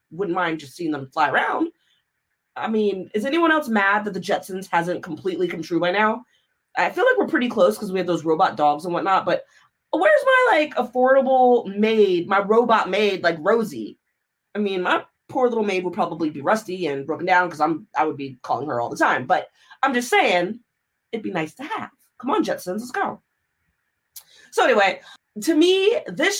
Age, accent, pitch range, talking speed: 30-49, American, 185-295 Hz, 200 wpm